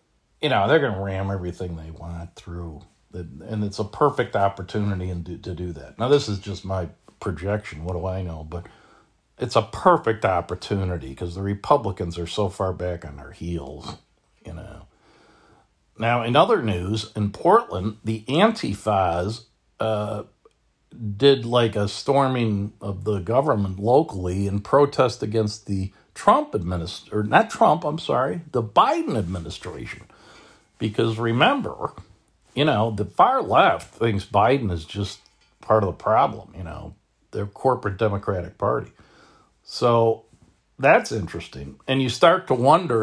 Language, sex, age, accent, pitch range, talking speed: English, male, 50-69, American, 90-110 Hz, 145 wpm